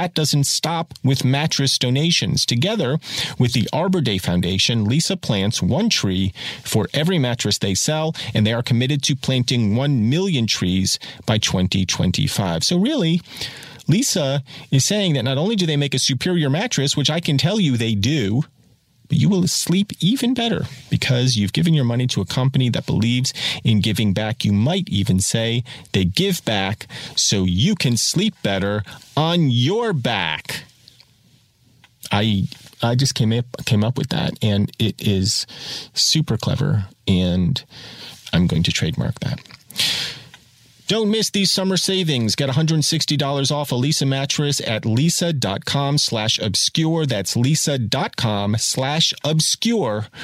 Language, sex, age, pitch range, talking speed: English, male, 40-59, 110-160 Hz, 150 wpm